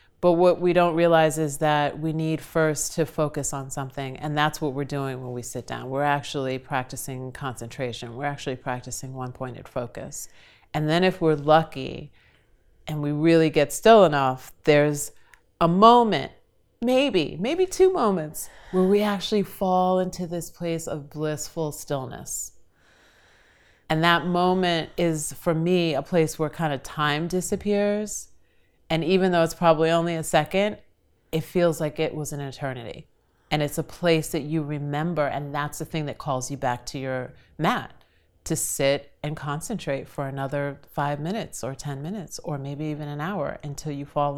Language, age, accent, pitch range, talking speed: English, 30-49, American, 140-170 Hz, 170 wpm